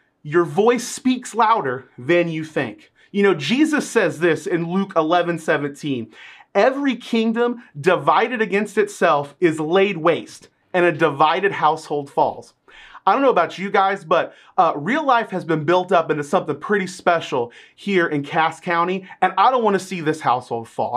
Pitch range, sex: 165-235 Hz, male